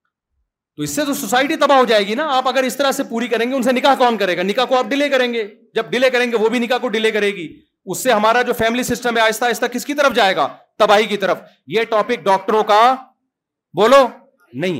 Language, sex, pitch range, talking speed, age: Urdu, male, 150-225 Hz, 195 wpm, 40-59